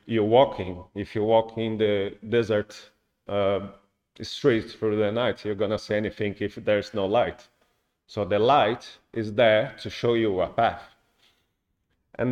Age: 40-59